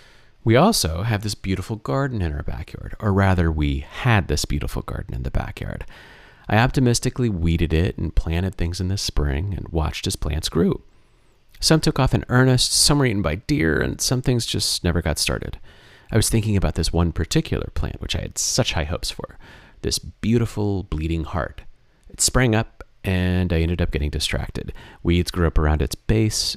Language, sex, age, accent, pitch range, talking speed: English, male, 30-49, American, 85-110 Hz, 190 wpm